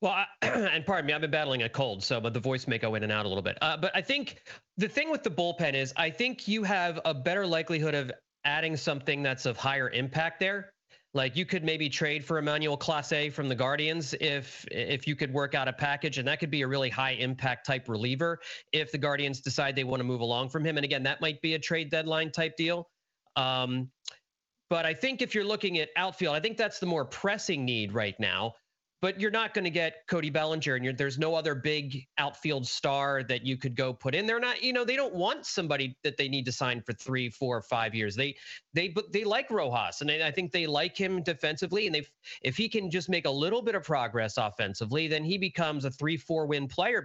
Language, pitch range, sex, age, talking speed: English, 130-175 Hz, male, 40-59, 245 wpm